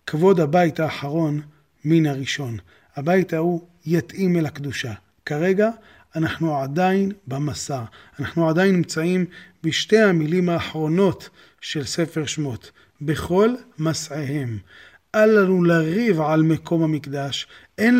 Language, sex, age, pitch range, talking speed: Hebrew, male, 30-49, 150-180 Hz, 105 wpm